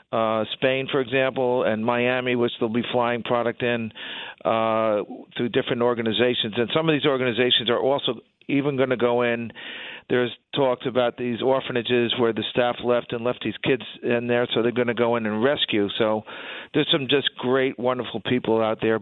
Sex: male